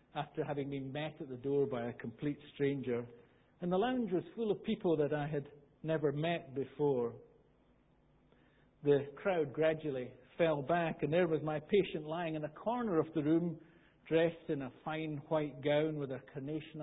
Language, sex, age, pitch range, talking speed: English, male, 60-79, 130-160 Hz, 180 wpm